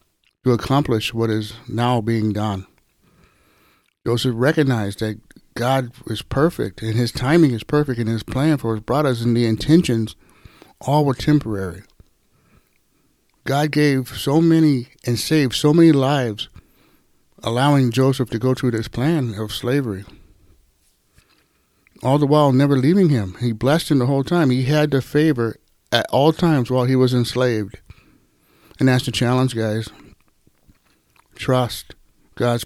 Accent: American